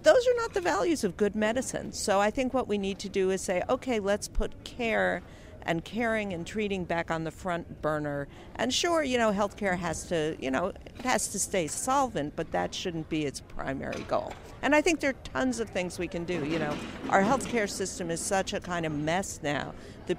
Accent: American